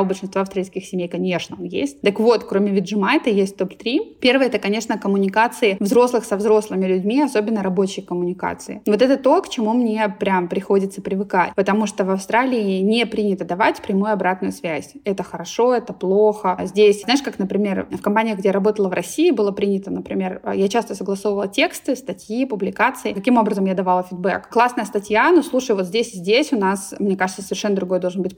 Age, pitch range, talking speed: 20-39, 190-225 Hz, 185 wpm